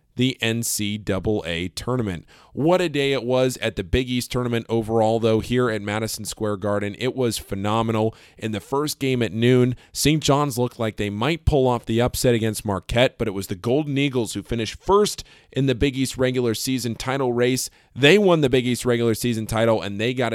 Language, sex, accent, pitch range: English, male, American, 105-130 Hz